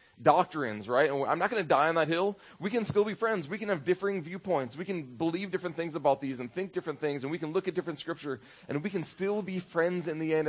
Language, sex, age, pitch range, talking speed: English, male, 20-39, 130-190 Hz, 275 wpm